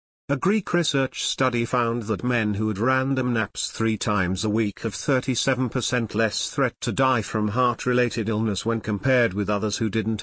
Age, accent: 50-69, British